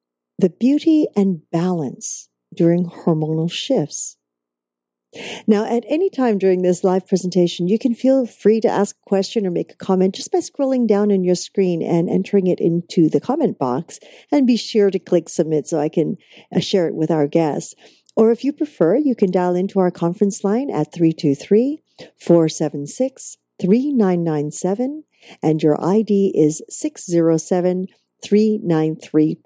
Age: 50-69